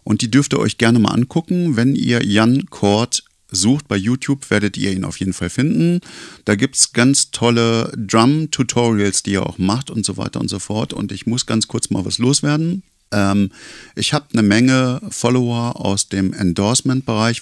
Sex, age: male, 50-69